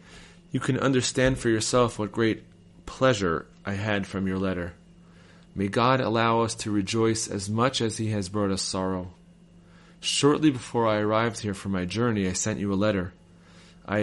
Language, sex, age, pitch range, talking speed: English, male, 30-49, 95-120 Hz, 175 wpm